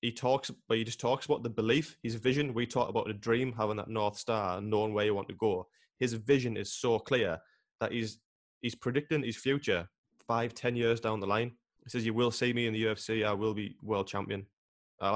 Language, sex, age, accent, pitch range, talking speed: English, male, 20-39, British, 105-125 Hz, 235 wpm